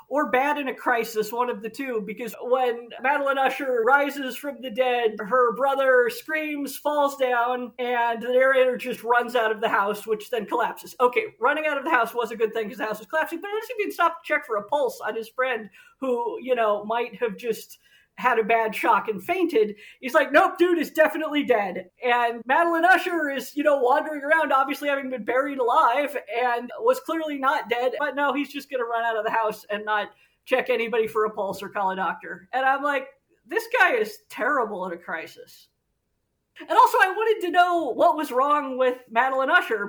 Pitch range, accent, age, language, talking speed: 210-280 Hz, American, 40-59, English, 215 wpm